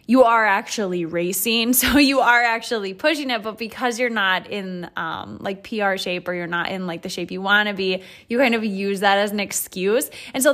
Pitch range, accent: 185-235 Hz, American